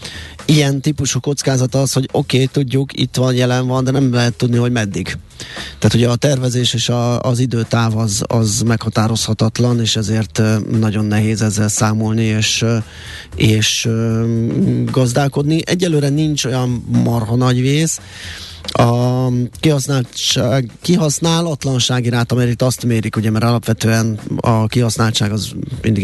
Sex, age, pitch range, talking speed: male, 20-39, 110-130 Hz, 130 wpm